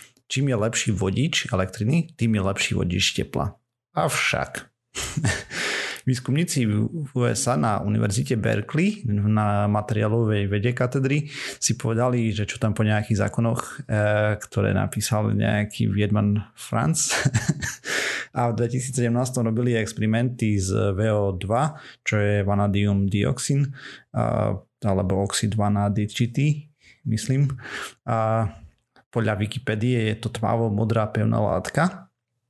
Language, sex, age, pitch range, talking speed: Slovak, male, 30-49, 105-125 Hz, 105 wpm